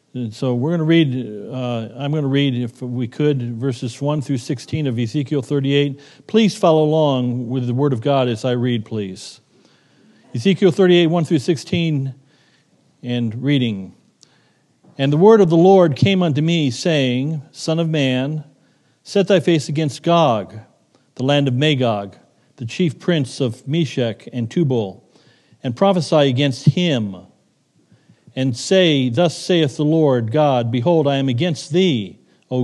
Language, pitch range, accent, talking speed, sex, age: English, 130-160 Hz, American, 160 wpm, male, 50-69